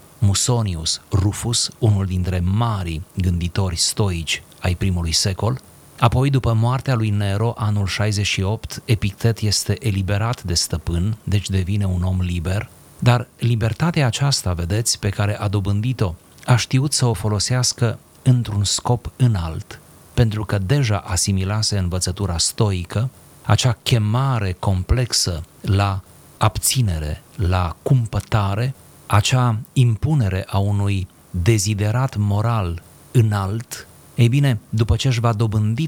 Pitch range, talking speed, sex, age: 95-120 Hz, 115 wpm, male, 30-49